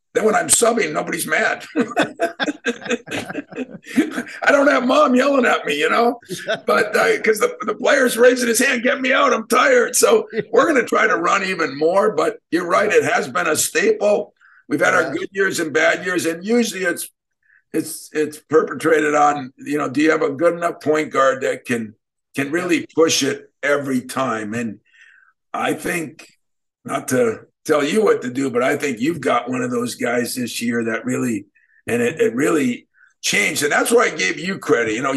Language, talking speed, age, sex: English, 200 wpm, 50-69, male